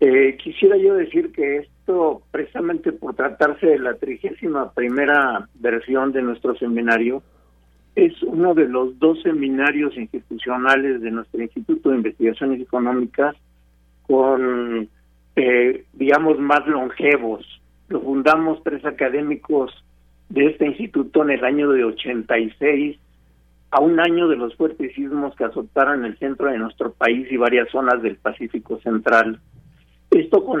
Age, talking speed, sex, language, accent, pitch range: 50-69, 135 wpm, male, Spanish, Mexican, 115-150 Hz